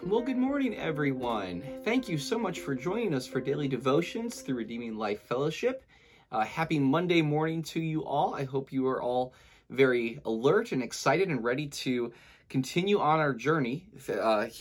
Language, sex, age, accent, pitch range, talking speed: English, male, 30-49, American, 120-160 Hz, 175 wpm